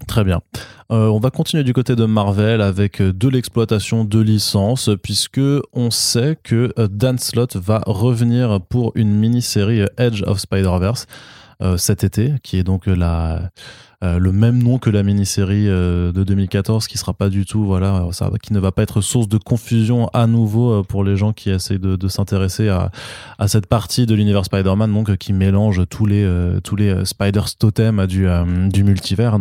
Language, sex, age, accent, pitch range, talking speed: French, male, 20-39, French, 95-110 Hz, 190 wpm